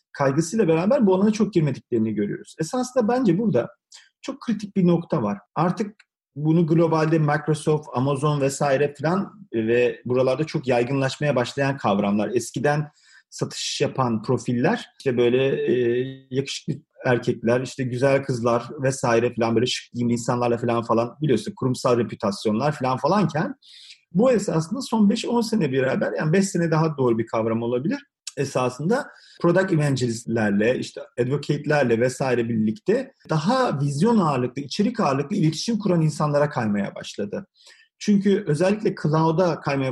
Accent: native